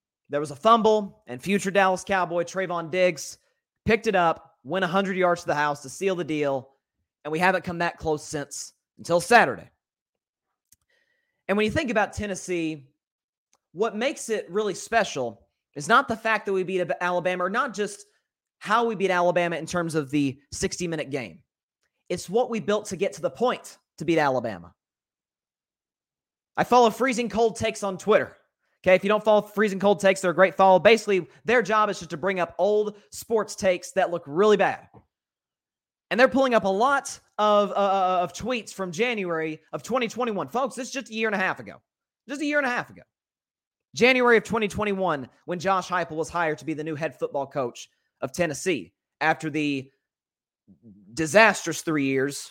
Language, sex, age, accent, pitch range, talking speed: English, male, 30-49, American, 160-215 Hz, 185 wpm